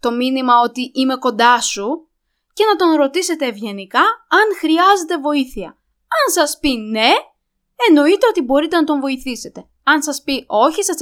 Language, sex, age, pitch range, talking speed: Greek, female, 20-39, 240-345 Hz, 160 wpm